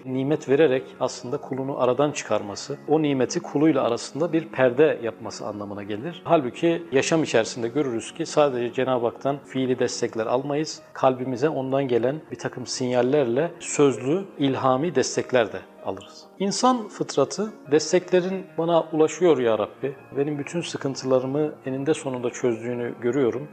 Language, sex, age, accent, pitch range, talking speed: Turkish, male, 40-59, native, 125-160 Hz, 130 wpm